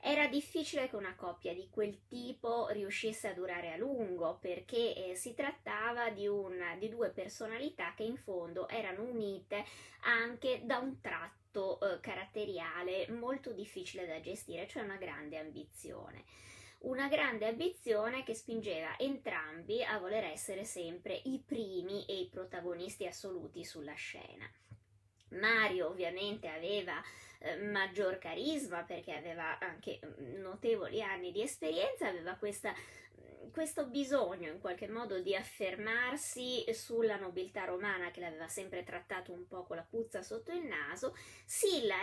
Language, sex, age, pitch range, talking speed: Italian, female, 20-39, 185-245 Hz, 135 wpm